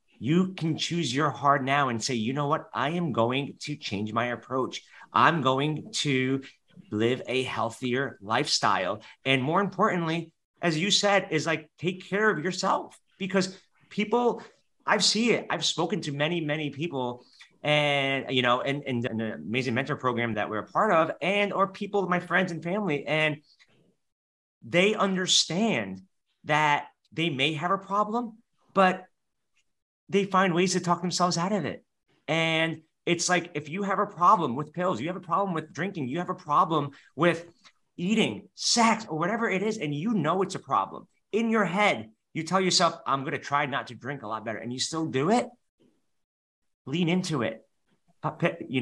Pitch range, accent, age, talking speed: 135-185 Hz, American, 30-49, 180 wpm